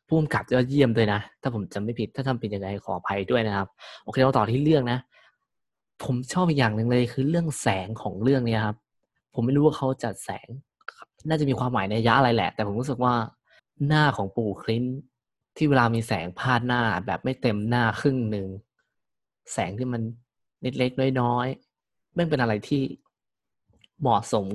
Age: 20-39